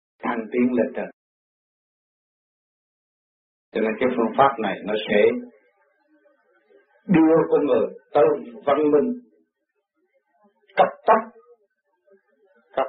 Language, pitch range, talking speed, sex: Vietnamese, 125-180 Hz, 95 wpm, male